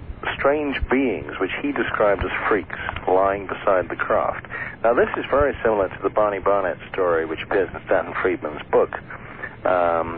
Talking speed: 165 wpm